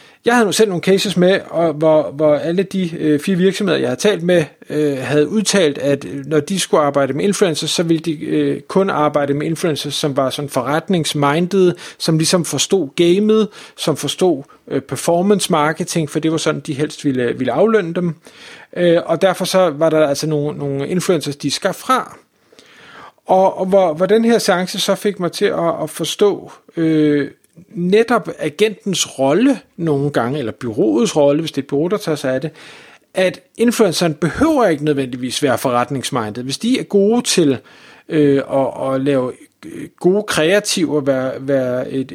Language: Danish